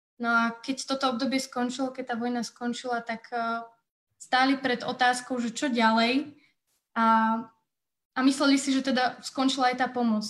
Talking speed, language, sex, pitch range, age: 155 wpm, Slovak, female, 225-255 Hz, 20-39